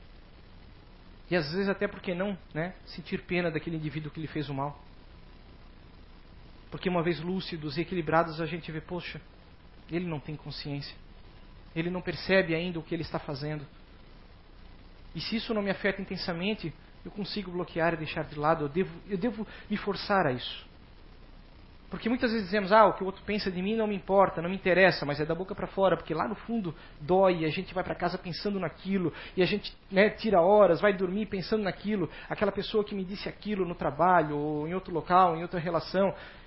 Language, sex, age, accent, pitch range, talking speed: Portuguese, male, 40-59, Brazilian, 155-205 Hz, 205 wpm